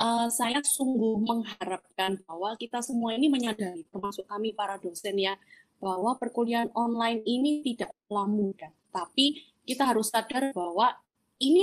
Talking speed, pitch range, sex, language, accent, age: 135 wpm, 195-250 Hz, female, Indonesian, native, 20-39